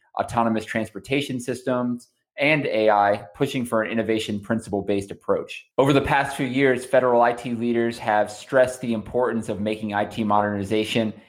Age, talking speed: 20-39, 145 wpm